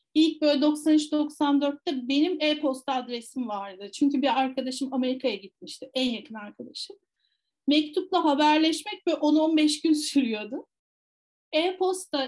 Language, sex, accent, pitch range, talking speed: Turkish, female, native, 265-315 Hz, 110 wpm